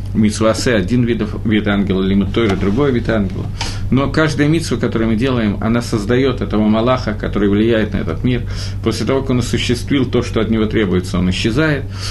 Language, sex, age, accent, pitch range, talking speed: Russian, male, 50-69, native, 100-145 Hz, 190 wpm